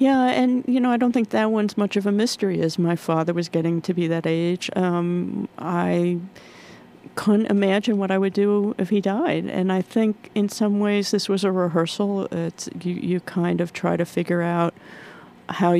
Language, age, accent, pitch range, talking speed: English, 40-59, American, 170-210 Hz, 200 wpm